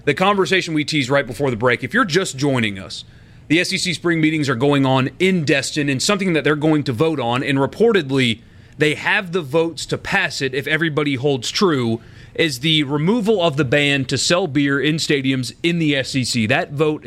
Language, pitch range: English, 125-160 Hz